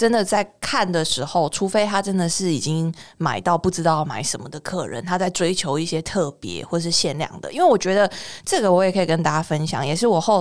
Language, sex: Chinese, female